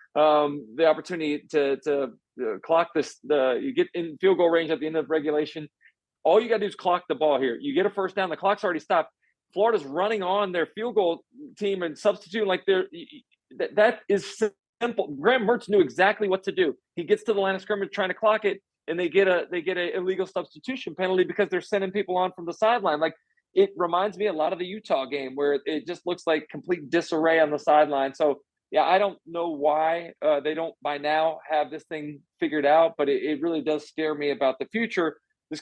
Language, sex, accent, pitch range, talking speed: English, male, American, 150-195 Hz, 230 wpm